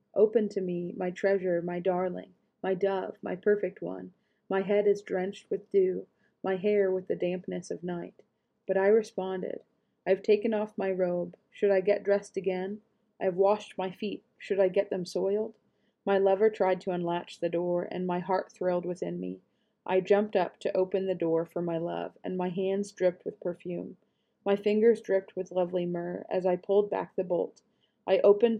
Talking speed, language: 190 wpm, English